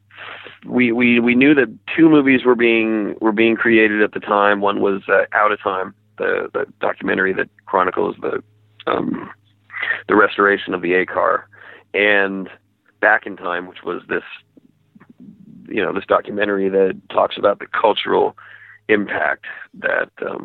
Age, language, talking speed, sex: 30-49, English, 155 wpm, male